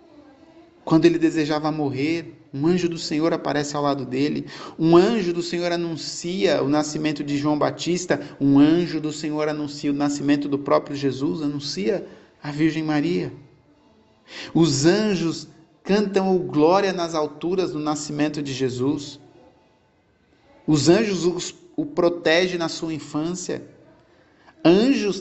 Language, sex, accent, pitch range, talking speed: Portuguese, male, Brazilian, 150-185 Hz, 130 wpm